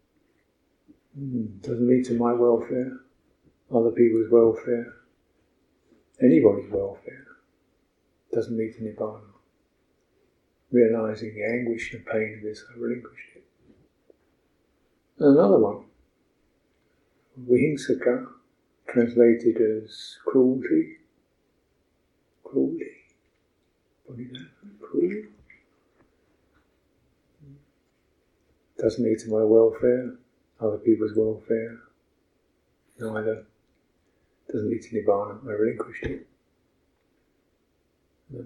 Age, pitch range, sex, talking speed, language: 50-69, 110-130 Hz, male, 85 wpm, English